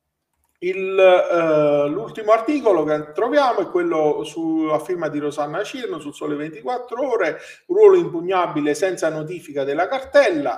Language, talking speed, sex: Italian, 130 wpm, male